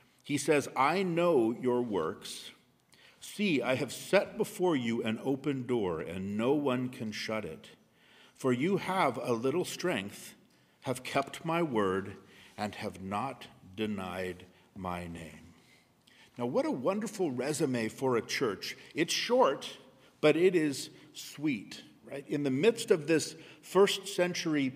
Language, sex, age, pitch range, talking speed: English, male, 50-69, 115-165 Hz, 145 wpm